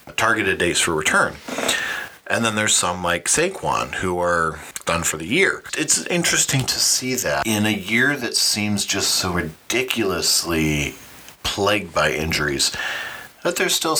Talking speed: 150 wpm